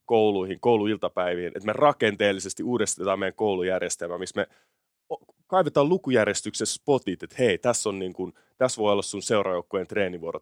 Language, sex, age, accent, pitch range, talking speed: Finnish, male, 30-49, native, 105-155 Hz, 145 wpm